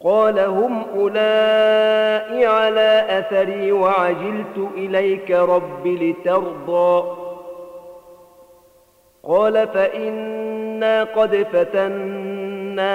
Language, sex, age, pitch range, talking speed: Arabic, male, 40-59, 175-200 Hz, 60 wpm